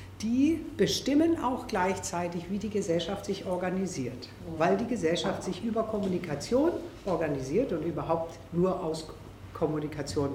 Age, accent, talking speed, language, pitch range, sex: 60-79, German, 120 wpm, German, 165-215 Hz, female